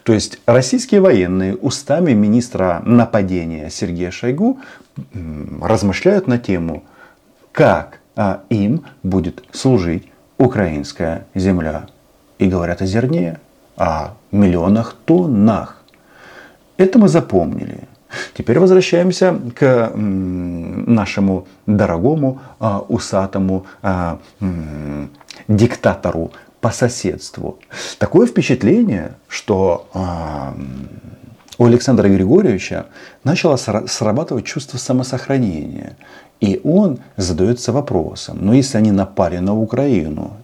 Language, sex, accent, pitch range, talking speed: Russian, male, native, 95-130 Hz, 85 wpm